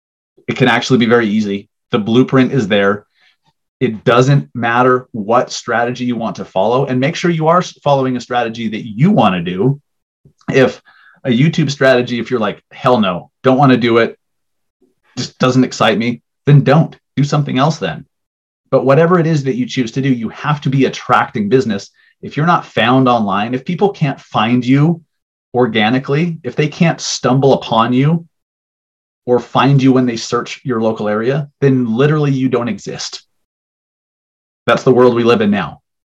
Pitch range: 115-145 Hz